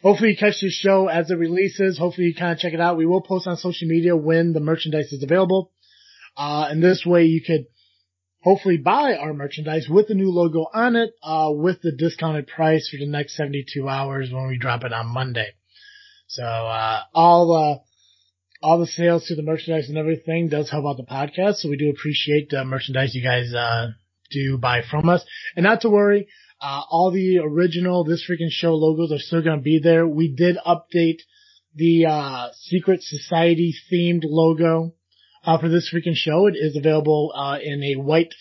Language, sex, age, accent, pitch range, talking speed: English, male, 30-49, American, 145-170 Hz, 200 wpm